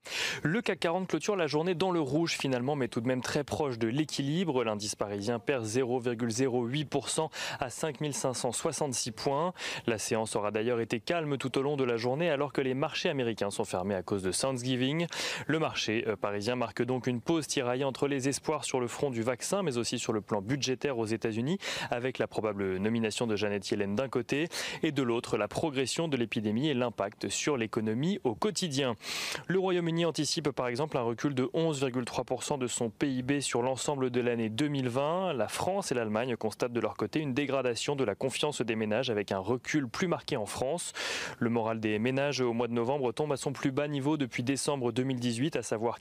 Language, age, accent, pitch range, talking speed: French, 30-49, French, 115-150 Hz, 200 wpm